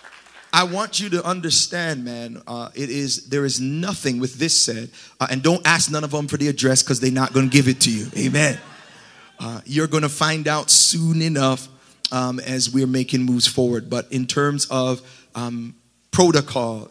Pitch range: 130-160 Hz